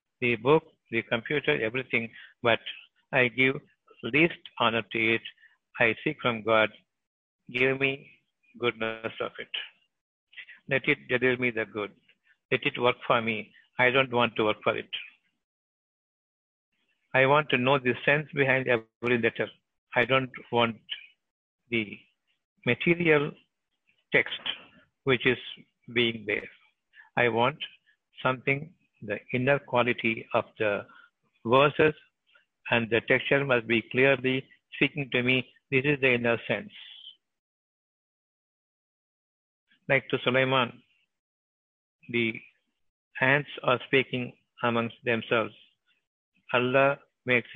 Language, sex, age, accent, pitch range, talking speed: Tamil, male, 60-79, native, 115-135 Hz, 115 wpm